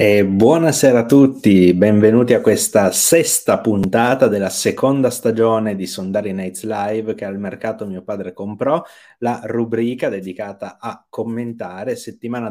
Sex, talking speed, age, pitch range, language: male, 130 wpm, 30-49, 100-120 Hz, Italian